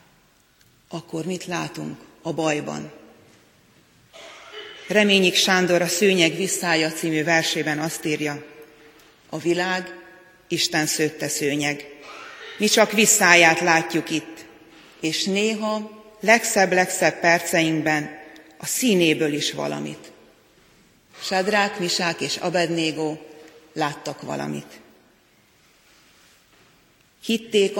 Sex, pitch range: female, 155-185 Hz